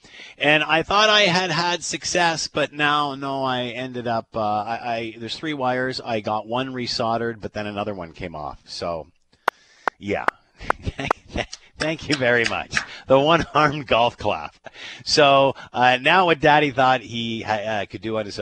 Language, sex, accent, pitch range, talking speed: English, male, American, 115-160 Hz, 170 wpm